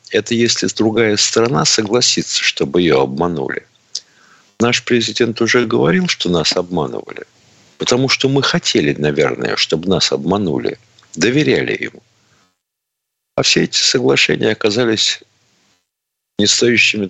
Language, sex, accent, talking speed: Russian, male, native, 110 wpm